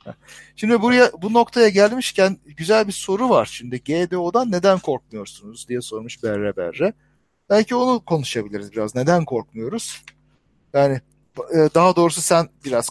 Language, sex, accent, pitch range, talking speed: Turkish, male, native, 135-195 Hz, 130 wpm